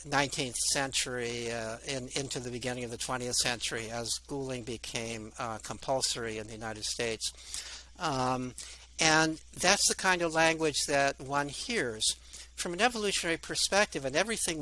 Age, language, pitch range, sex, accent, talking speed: 60-79, English, 125-160 Hz, male, American, 150 wpm